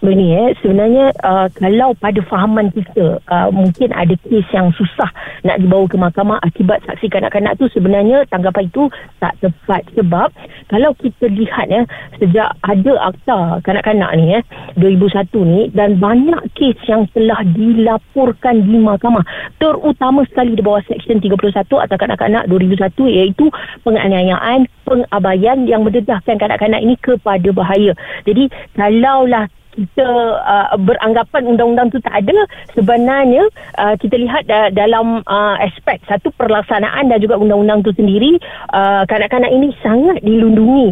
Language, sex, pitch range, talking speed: Malay, female, 200-245 Hz, 140 wpm